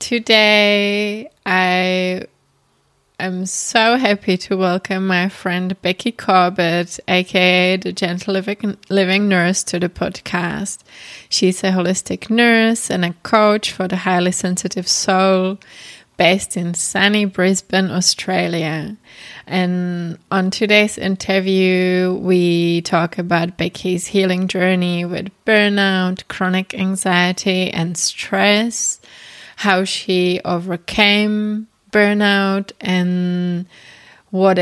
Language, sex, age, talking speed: English, female, 20-39, 100 wpm